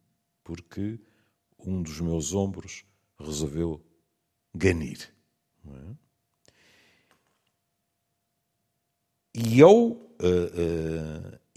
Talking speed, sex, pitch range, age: 55 wpm, male, 75-100 Hz, 50-69